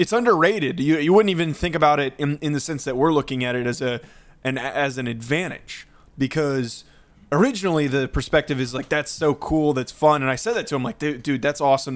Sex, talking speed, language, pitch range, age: male, 230 wpm, English, 125-150 Hz, 20-39